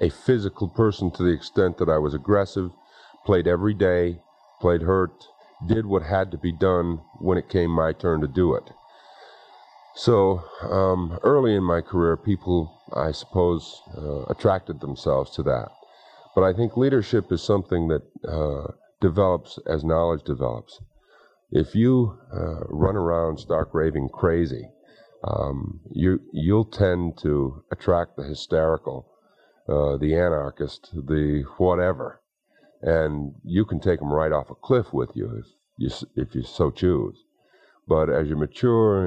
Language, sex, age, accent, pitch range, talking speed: English, male, 50-69, American, 75-90 Hz, 145 wpm